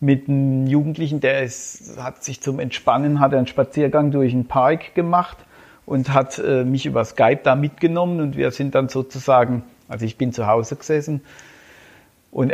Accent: German